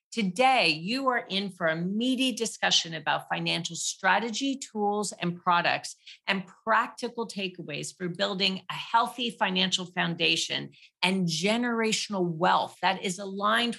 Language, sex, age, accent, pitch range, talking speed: English, female, 40-59, American, 175-225 Hz, 125 wpm